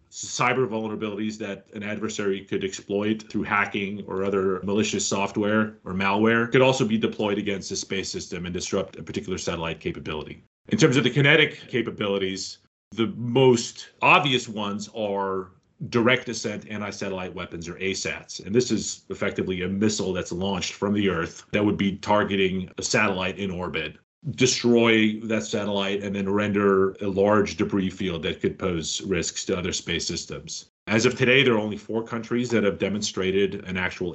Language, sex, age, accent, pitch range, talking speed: English, male, 30-49, American, 95-120 Hz, 170 wpm